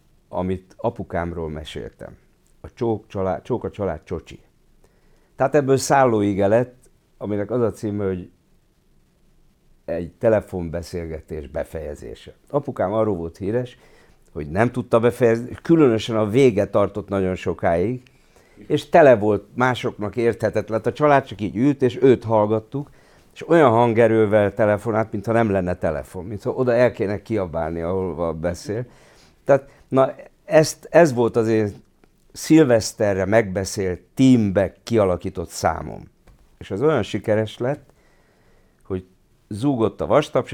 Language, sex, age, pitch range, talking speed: English, male, 60-79, 95-120 Hz, 125 wpm